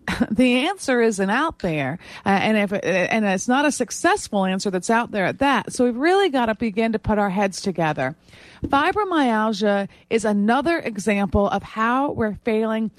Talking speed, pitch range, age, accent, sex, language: 180 wpm, 205-265 Hz, 40-59, American, female, English